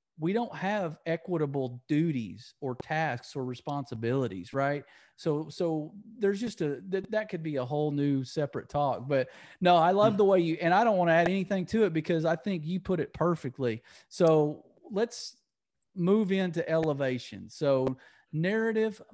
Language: English